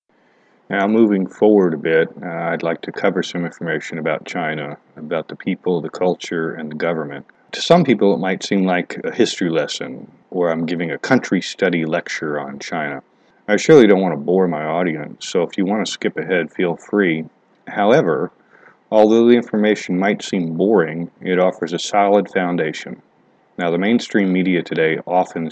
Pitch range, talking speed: 85-105 Hz, 180 wpm